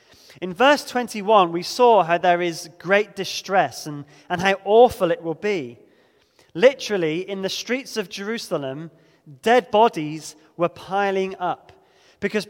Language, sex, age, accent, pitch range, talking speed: English, male, 20-39, British, 165-230 Hz, 140 wpm